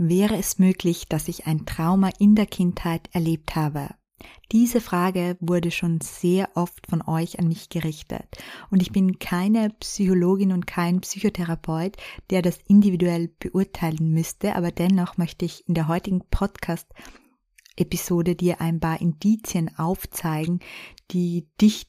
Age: 20-39